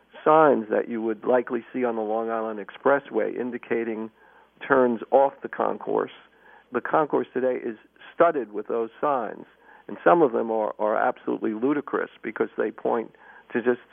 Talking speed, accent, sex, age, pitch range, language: 160 wpm, American, male, 50-69, 110-130 Hz, English